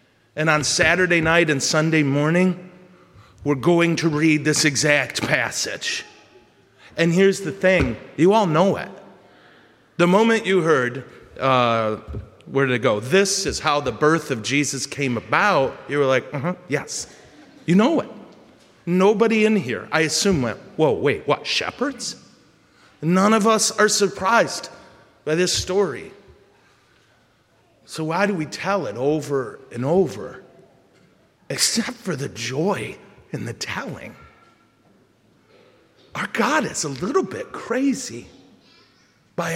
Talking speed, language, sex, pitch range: 135 wpm, English, male, 145-200 Hz